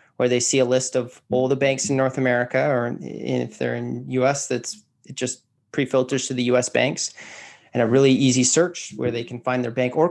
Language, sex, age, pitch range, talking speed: English, male, 30-49, 125-140 Hz, 220 wpm